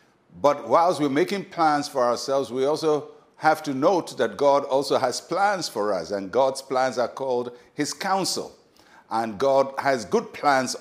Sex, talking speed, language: male, 170 wpm, English